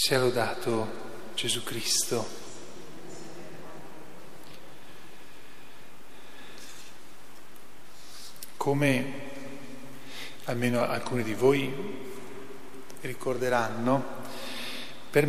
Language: Italian